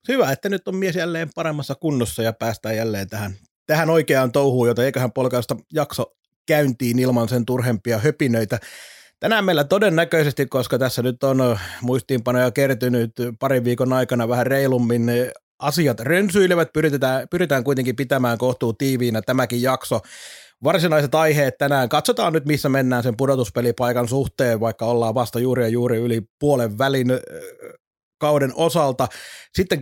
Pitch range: 125-155 Hz